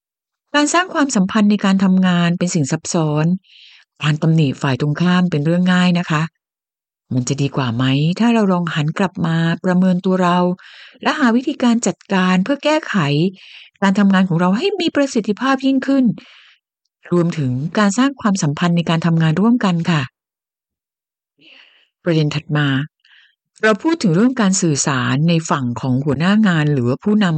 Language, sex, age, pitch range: Thai, female, 60-79, 155-210 Hz